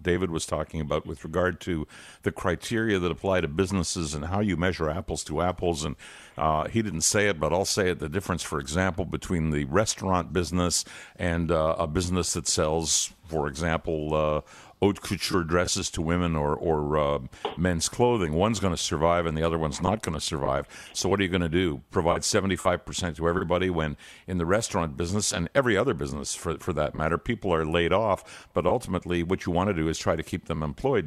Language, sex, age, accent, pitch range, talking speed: English, male, 50-69, American, 80-95 Hz, 210 wpm